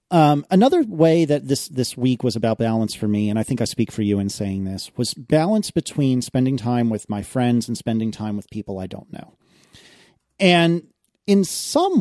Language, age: English, 40-59